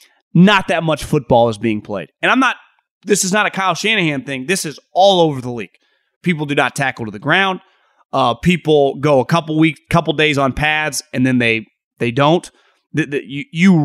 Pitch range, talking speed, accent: 145-190 Hz, 210 wpm, American